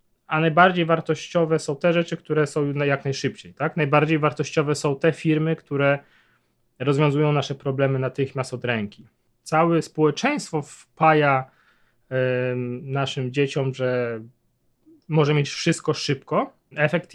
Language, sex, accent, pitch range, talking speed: Polish, male, native, 130-165 Hz, 125 wpm